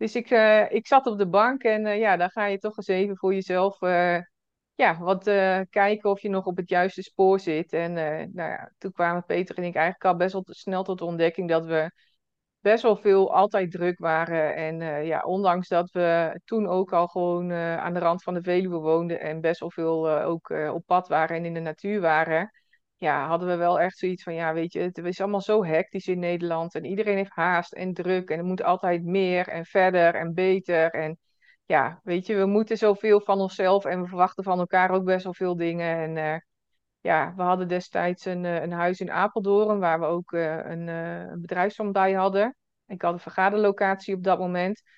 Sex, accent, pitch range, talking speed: female, Dutch, 170-195 Hz, 215 wpm